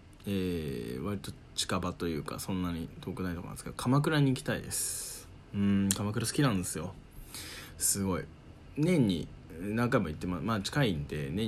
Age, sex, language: 20-39, male, Japanese